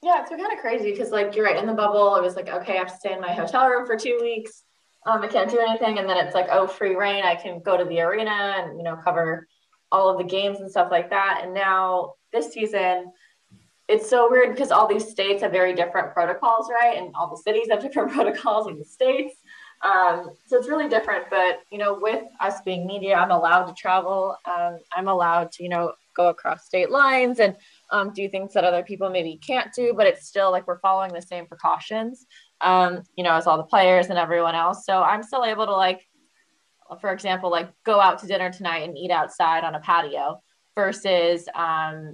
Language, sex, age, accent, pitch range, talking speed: English, female, 20-39, American, 175-215 Hz, 230 wpm